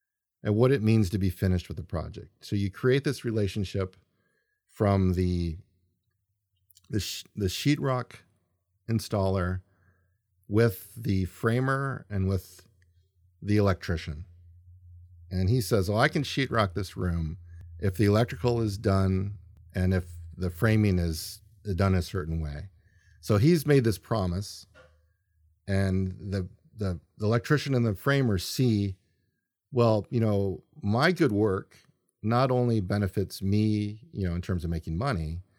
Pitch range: 90-115 Hz